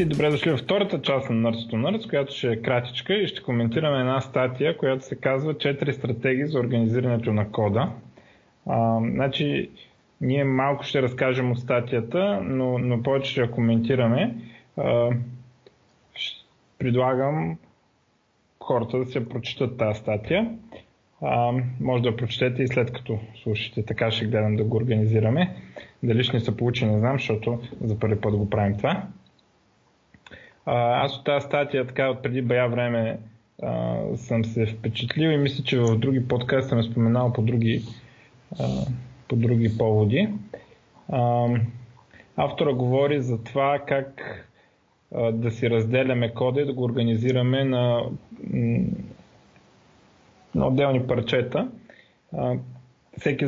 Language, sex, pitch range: Bulgarian, male, 115-135 Hz